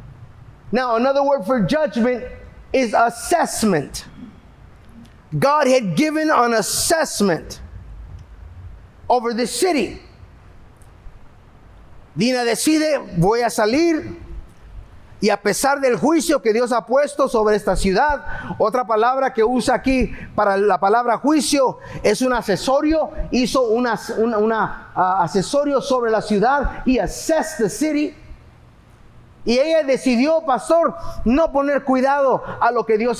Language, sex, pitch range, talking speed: English, male, 215-305 Hz, 115 wpm